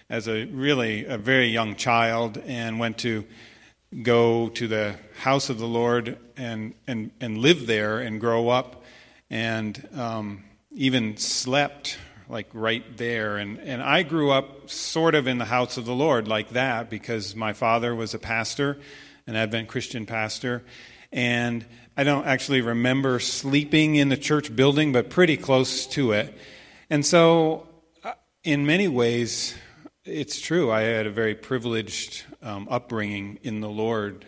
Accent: American